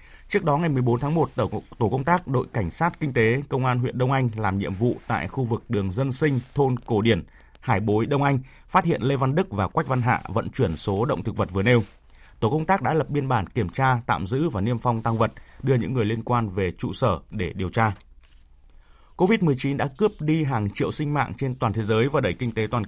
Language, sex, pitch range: Vietnamese, male, 105-145 Hz